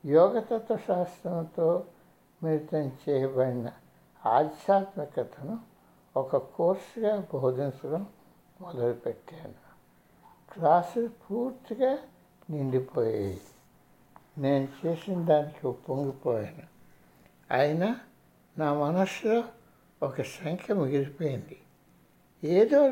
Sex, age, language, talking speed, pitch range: male, 60-79, Telugu, 60 wpm, 135-195 Hz